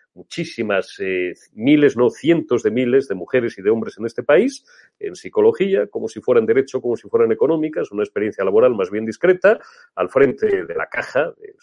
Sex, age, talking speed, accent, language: male, 40-59, 190 wpm, Spanish, Spanish